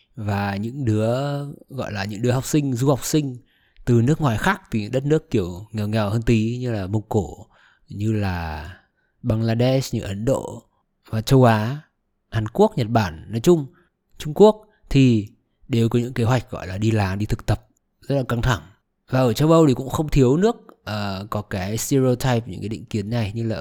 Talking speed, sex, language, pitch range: 210 wpm, male, Vietnamese, 100-130 Hz